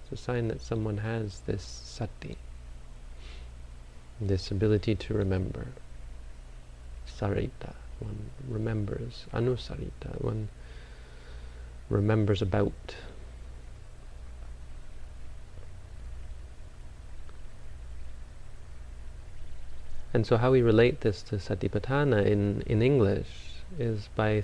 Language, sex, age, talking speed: English, male, 40-59, 75 wpm